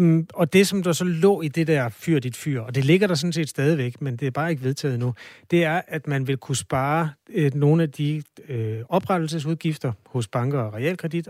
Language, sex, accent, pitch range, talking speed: Danish, male, native, 130-165 Hz, 230 wpm